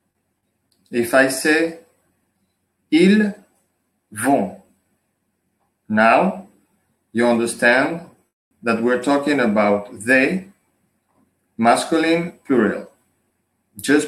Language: English